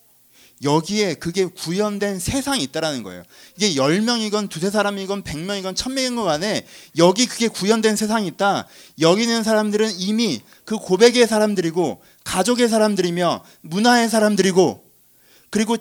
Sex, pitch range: male, 170-235 Hz